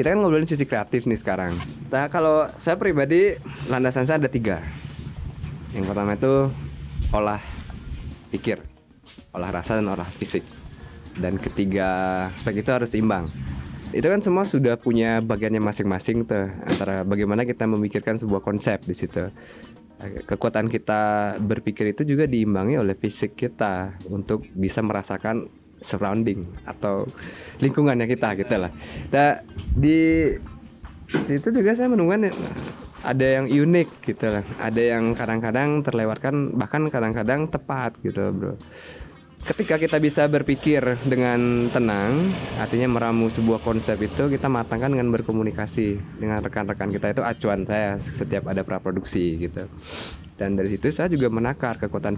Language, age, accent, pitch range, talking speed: Indonesian, 20-39, native, 100-130 Hz, 135 wpm